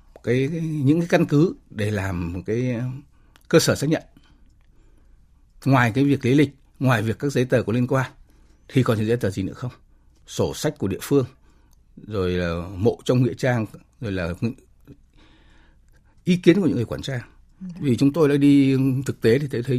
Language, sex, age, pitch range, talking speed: Vietnamese, male, 60-79, 100-140 Hz, 195 wpm